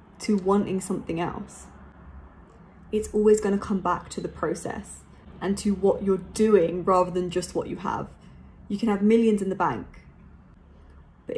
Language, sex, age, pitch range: English, female, 20-39, 185-210 Hz